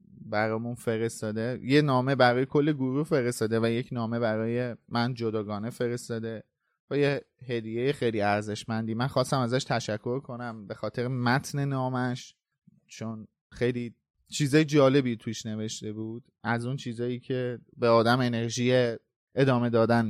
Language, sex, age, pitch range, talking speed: Persian, male, 20-39, 110-135 Hz, 135 wpm